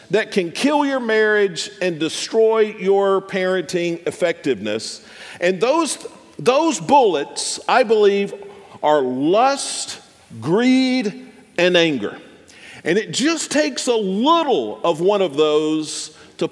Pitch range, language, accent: 185-245 Hz, English, American